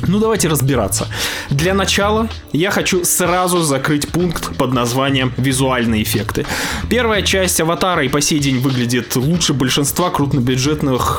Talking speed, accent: 135 wpm, native